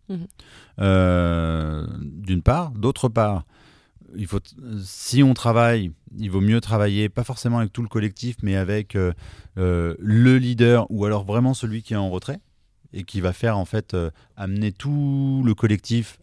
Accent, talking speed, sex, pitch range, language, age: French, 160 wpm, male, 90-115 Hz, French, 30-49